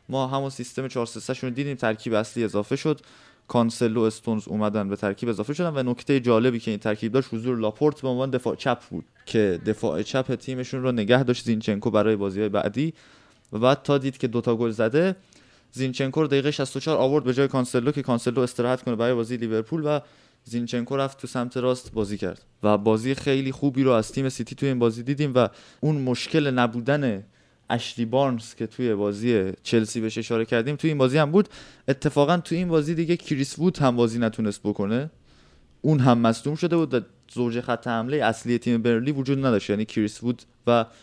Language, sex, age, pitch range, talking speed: Persian, male, 20-39, 115-135 Hz, 195 wpm